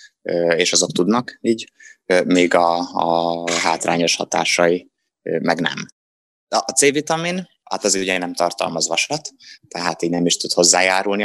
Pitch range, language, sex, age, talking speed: 85-130 Hz, Hungarian, male, 20-39, 135 wpm